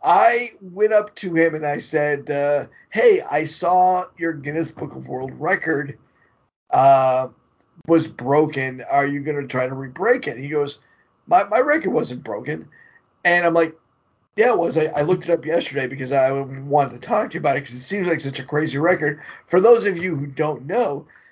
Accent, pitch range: American, 145-200 Hz